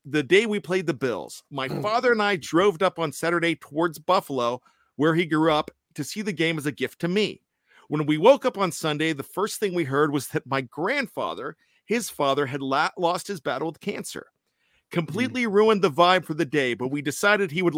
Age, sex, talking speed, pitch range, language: 50-69, male, 215 wpm, 140-175 Hz, English